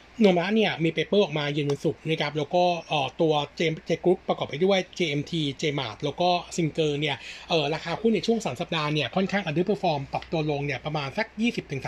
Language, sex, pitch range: Thai, male, 150-190 Hz